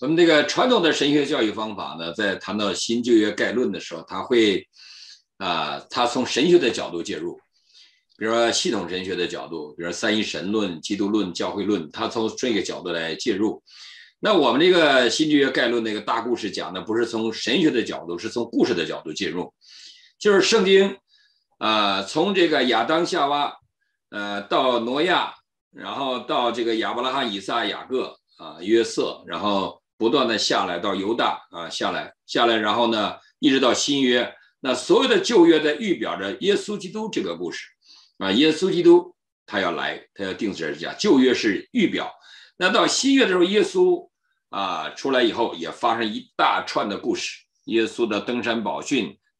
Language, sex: Chinese, male